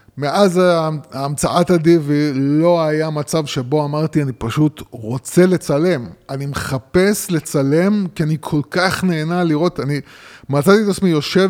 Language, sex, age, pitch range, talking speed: Hebrew, male, 20-39, 130-170 Hz, 135 wpm